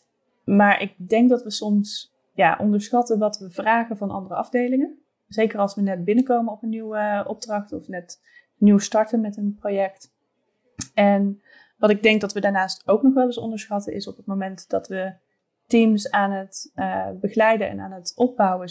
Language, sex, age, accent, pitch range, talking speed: Dutch, female, 20-39, Dutch, 195-225 Hz, 185 wpm